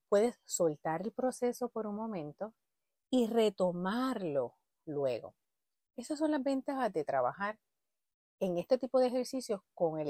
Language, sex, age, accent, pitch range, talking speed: Spanish, female, 30-49, American, 180-255 Hz, 135 wpm